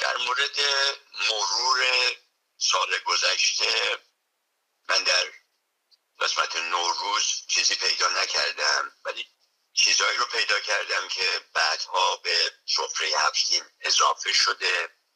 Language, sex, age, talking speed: Persian, male, 60-79, 95 wpm